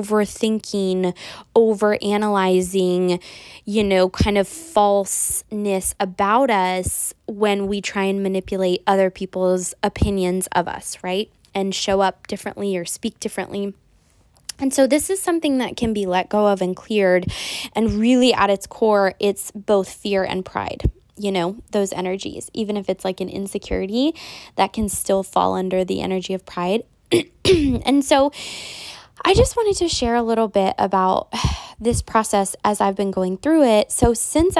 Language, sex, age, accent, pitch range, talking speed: English, female, 10-29, American, 195-235 Hz, 155 wpm